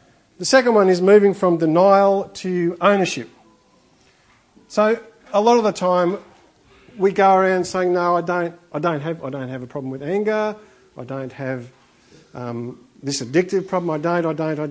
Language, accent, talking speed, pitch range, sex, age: English, Australian, 180 wpm, 150-200 Hz, male, 50-69